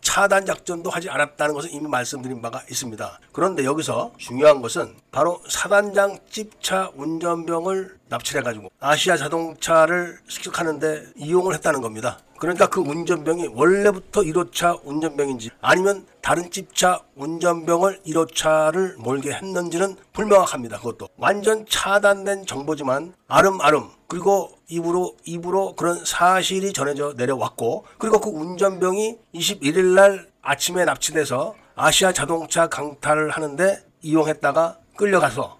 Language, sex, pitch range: Korean, male, 150-195 Hz